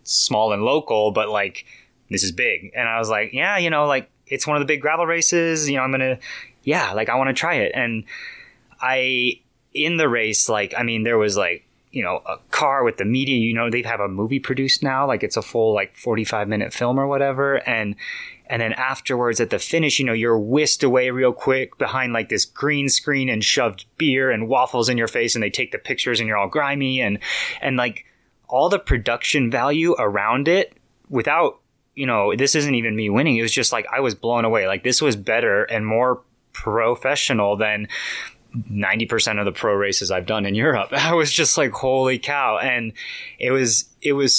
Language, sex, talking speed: English, male, 215 wpm